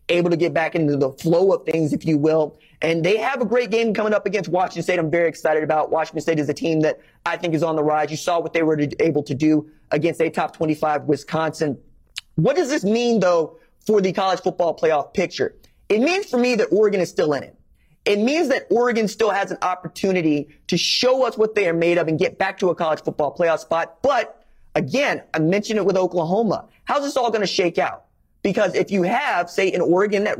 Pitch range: 160-205 Hz